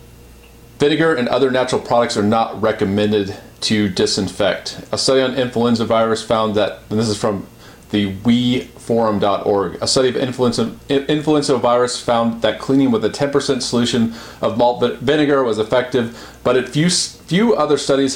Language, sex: English, male